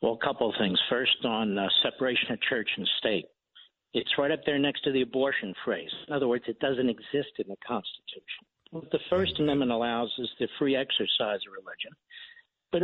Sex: male